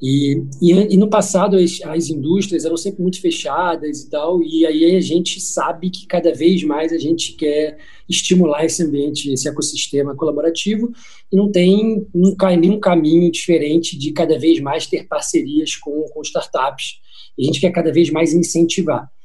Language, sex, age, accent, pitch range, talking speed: Portuguese, male, 20-39, Brazilian, 155-190 Hz, 165 wpm